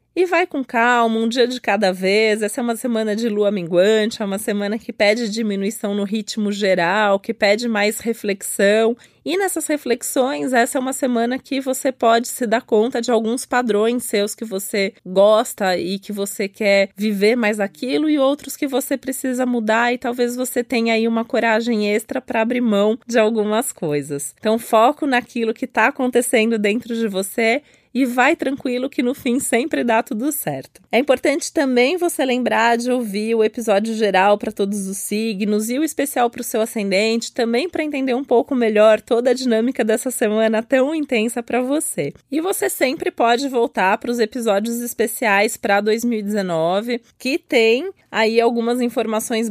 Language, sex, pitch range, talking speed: Portuguese, female, 215-255 Hz, 180 wpm